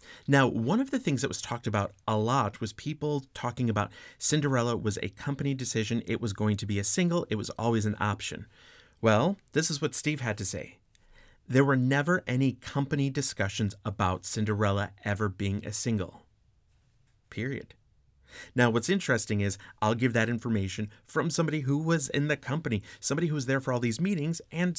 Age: 30-49